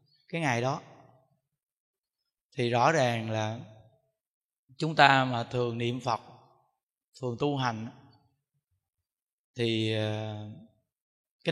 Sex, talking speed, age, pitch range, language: male, 95 wpm, 20-39, 120-145 Hz, Vietnamese